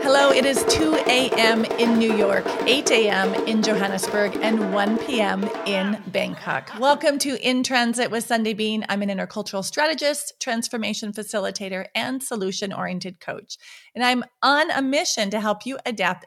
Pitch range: 200-250 Hz